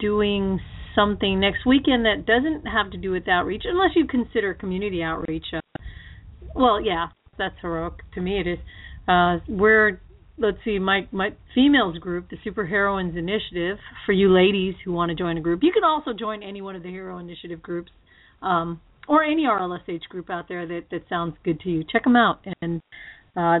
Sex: female